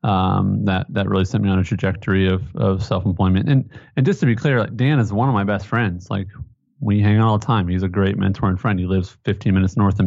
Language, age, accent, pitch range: English, 30-49, American, 100-125 Hz